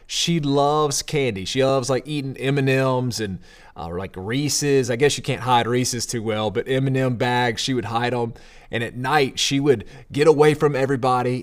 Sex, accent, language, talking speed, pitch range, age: male, American, English, 190 wpm, 115-145 Hz, 30-49